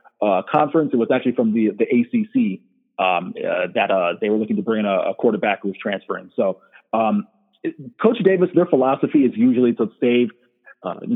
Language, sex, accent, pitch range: English, male, American, 115-140 Hz